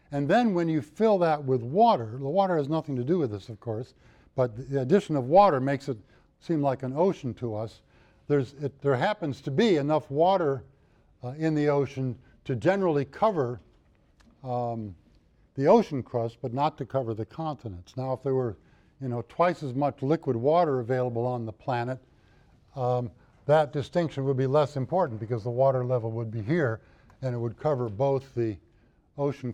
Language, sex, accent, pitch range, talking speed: English, male, American, 120-155 Hz, 185 wpm